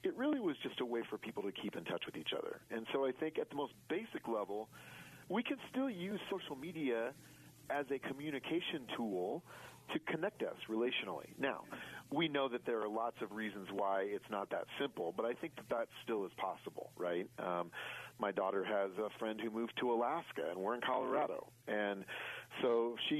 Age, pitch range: 40-59, 105-150 Hz